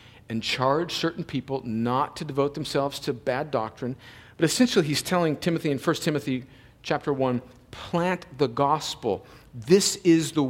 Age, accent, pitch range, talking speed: 50-69, American, 120-160 Hz, 155 wpm